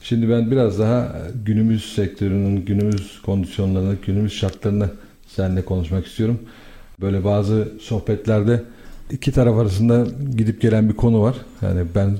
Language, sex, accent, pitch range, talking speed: Turkish, male, native, 100-120 Hz, 130 wpm